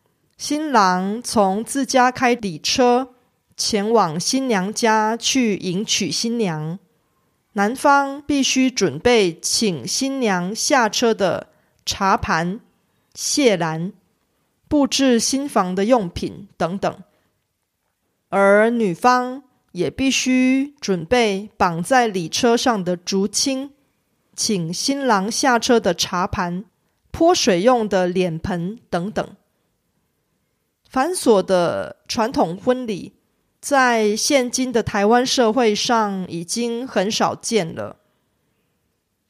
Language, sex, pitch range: Korean, female, 195-255 Hz